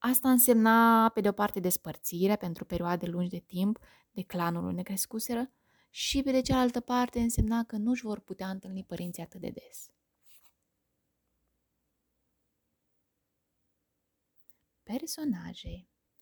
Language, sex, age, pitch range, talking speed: English, female, 20-39, 180-240 Hz, 115 wpm